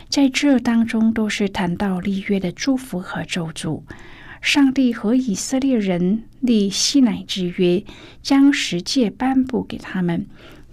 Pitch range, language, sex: 180-235 Hz, Chinese, female